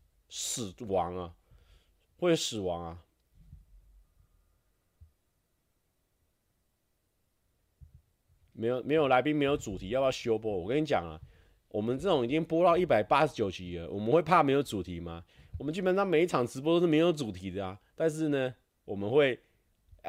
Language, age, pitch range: Chinese, 30-49, 90-145 Hz